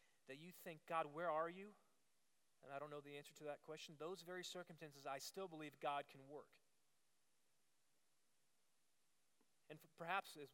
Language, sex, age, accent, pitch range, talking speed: English, male, 30-49, American, 150-205 Hz, 160 wpm